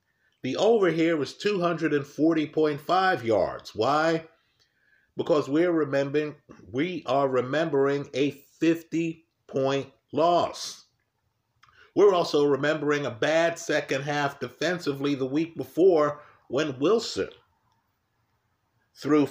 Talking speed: 95 wpm